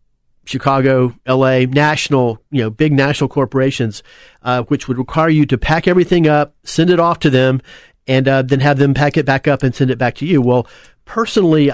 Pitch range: 130-160 Hz